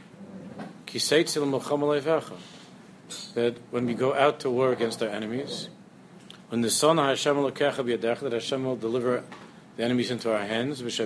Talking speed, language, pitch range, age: 135 wpm, English, 120-160 Hz, 50-69